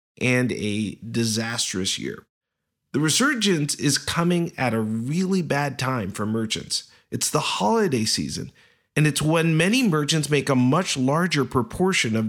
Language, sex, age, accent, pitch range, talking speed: English, male, 40-59, American, 120-165 Hz, 145 wpm